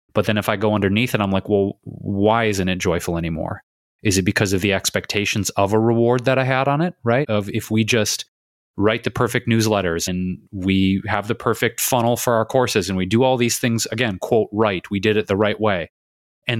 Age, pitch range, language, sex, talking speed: 30-49, 95-115 Hz, English, male, 230 wpm